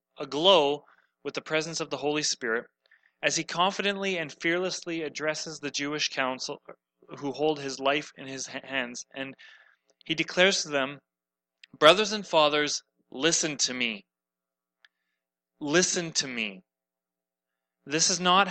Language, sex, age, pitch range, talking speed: English, male, 30-49, 115-165 Hz, 135 wpm